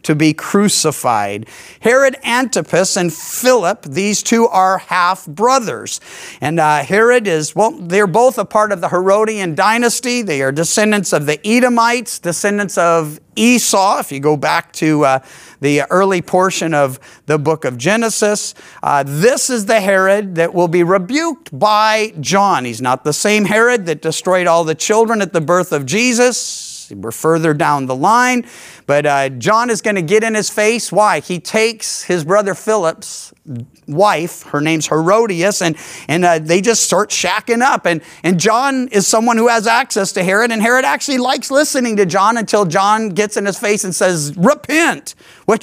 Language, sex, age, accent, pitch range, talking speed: English, male, 50-69, American, 165-225 Hz, 175 wpm